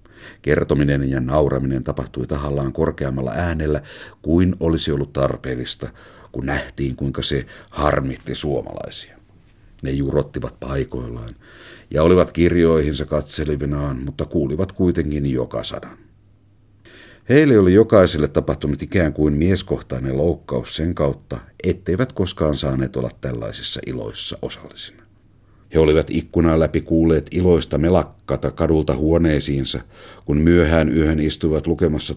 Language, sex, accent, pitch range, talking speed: Finnish, male, native, 75-100 Hz, 110 wpm